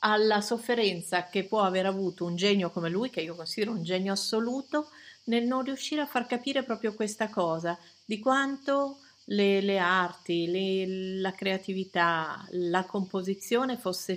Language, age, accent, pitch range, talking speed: Italian, 50-69, native, 180-220 Hz, 150 wpm